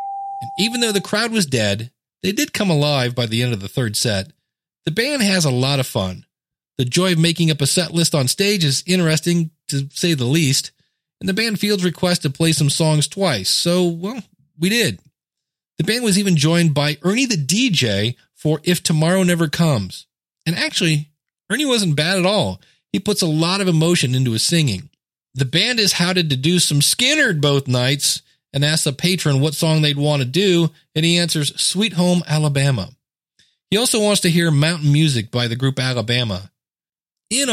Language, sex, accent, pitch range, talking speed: English, male, American, 125-175 Hz, 195 wpm